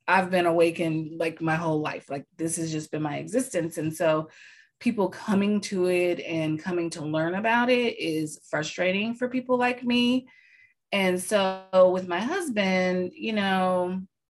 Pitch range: 155-195 Hz